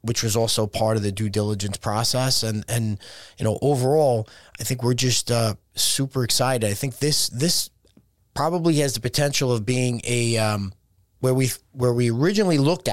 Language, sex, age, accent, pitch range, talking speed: English, male, 30-49, American, 110-135 Hz, 180 wpm